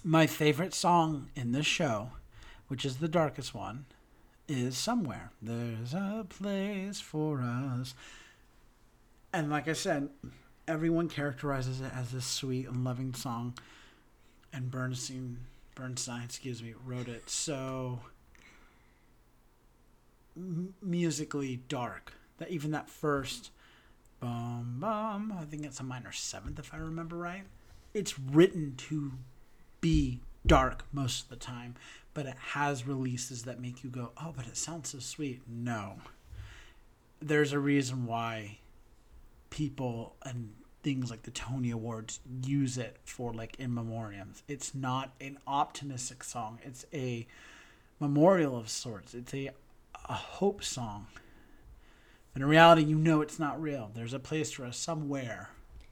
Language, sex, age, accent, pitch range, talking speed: English, male, 40-59, American, 120-150 Hz, 135 wpm